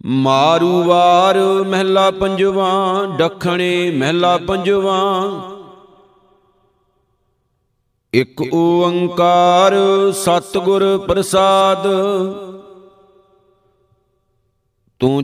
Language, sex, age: Punjabi, male, 50-69